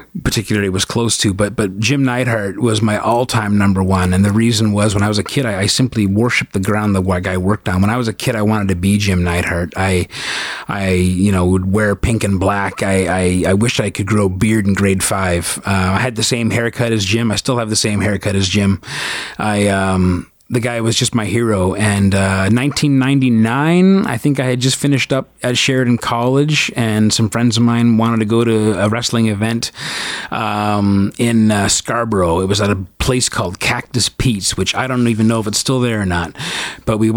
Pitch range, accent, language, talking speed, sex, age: 100-120 Hz, American, English, 225 wpm, male, 30-49